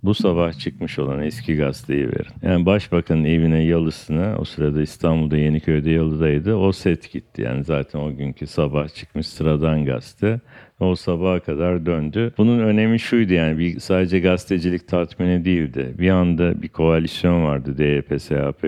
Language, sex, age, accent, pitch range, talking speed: Turkish, male, 60-79, native, 75-95 Hz, 150 wpm